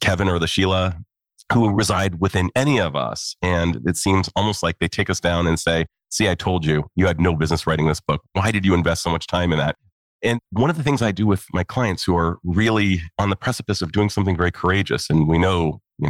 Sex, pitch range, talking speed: male, 85-110 Hz, 245 wpm